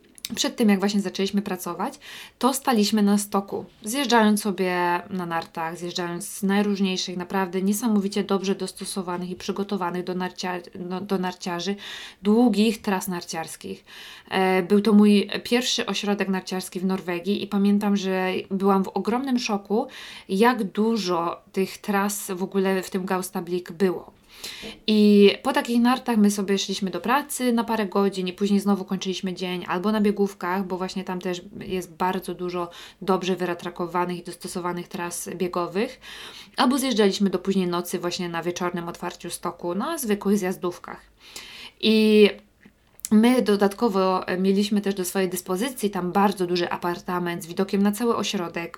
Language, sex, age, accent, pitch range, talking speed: English, female, 20-39, Polish, 180-205 Hz, 145 wpm